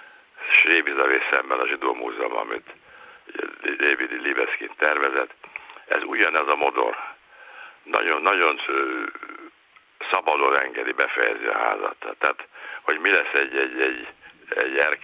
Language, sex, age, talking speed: Hungarian, male, 60-79, 110 wpm